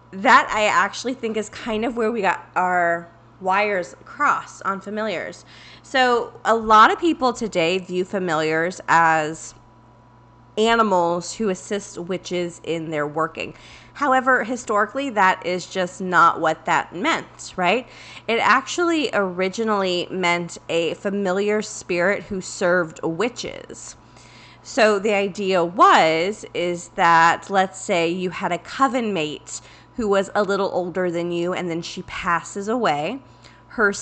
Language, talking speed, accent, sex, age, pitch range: English, 135 wpm, American, female, 20-39, 165-210 Hz